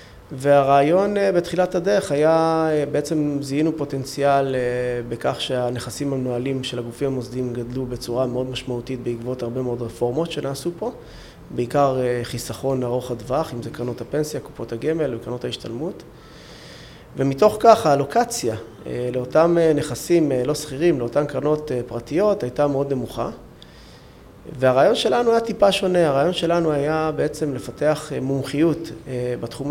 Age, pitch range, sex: 20-39, 125-160 Hz, male